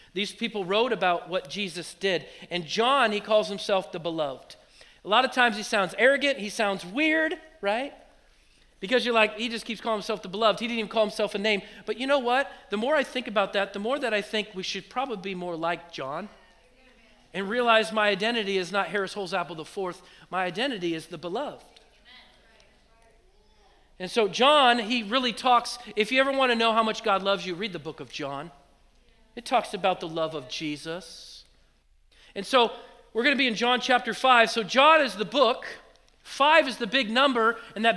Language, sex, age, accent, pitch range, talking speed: English, male, 40-59, American, 195-240 Hz, 205 wpm